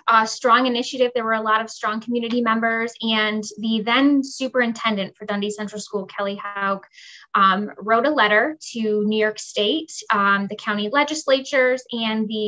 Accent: American